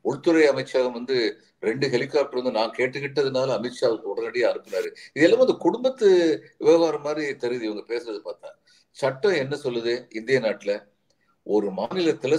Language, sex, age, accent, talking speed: Tamil, male, 50-69, native, 95 wpm